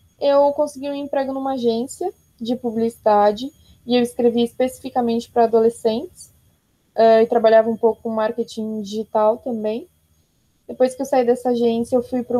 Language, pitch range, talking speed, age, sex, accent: Portuguese, 225-275 Hz, 155 wpm, 20-39, female, Brazilian